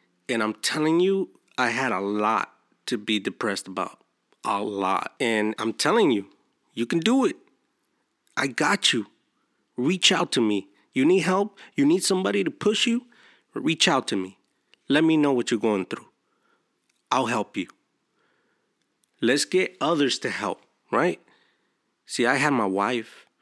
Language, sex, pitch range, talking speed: English, male, 110-175 Hz, 160 wpm